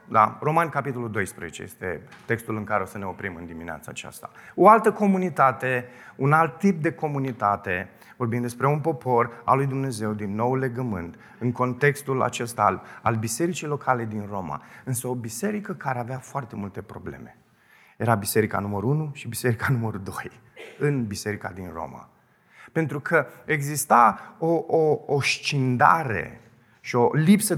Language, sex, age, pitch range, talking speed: Romanian, male, 30-49, 110-155 Hz, 155 wpm